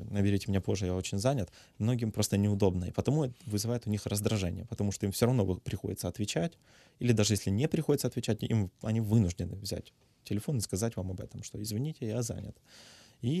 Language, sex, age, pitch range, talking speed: Ukrainian, male, 20-39, 100-120 Hz, 195 wpm